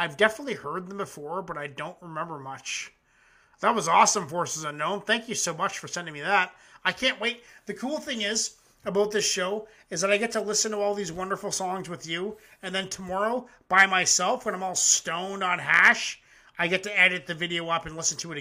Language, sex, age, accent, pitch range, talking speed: English, male, 30-49, American, 180-245 Hz, 220 wpm